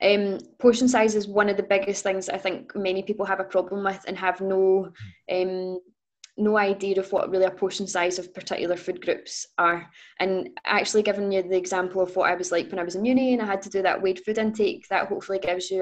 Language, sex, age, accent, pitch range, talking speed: English, female, 20-39, British, 180-195 Hz, 240 wpm